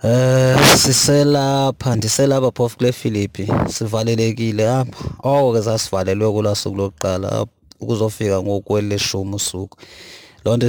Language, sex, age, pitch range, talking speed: English, male, 30-49, 100-115 Hz, 100 wpm